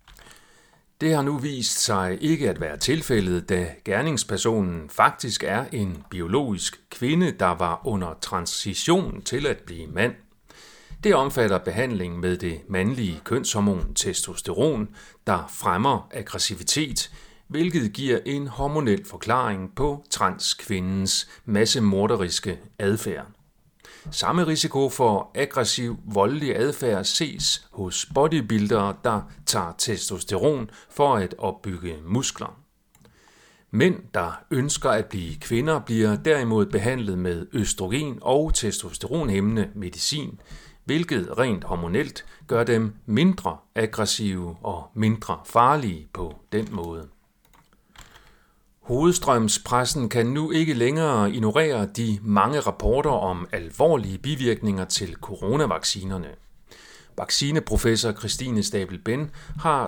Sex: male